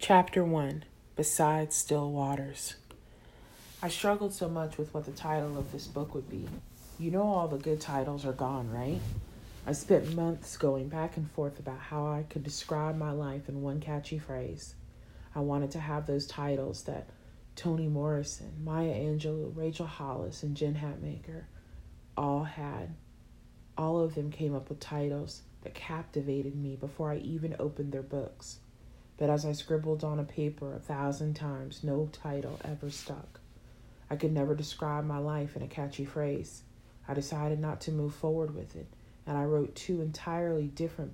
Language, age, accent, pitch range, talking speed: English, 40-59, American, 135-155 Hz, 170 wpm